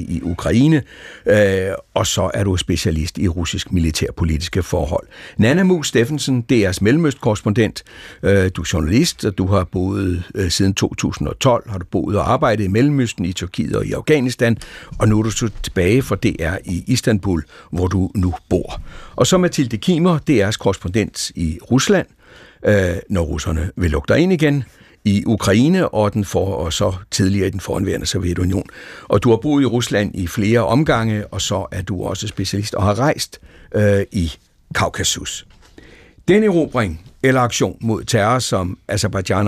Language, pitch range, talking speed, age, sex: Danish, 95-120 Hz, 165 wpm, 60-79, male